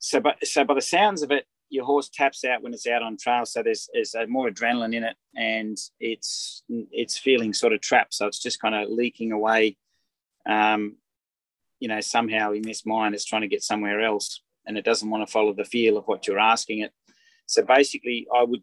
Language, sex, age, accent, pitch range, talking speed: English, male, 30-49, Australian, 110-130 Hz, 215 wpm